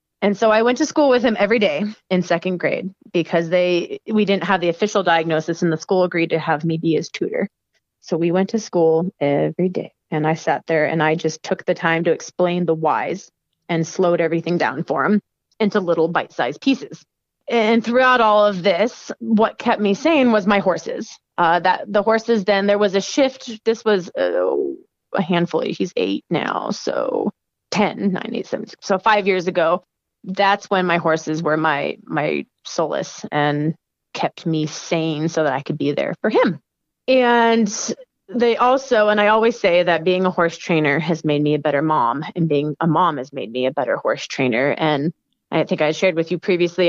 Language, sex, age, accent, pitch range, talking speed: English, female, 30-49, American, 160-205 Hz, 200 wpm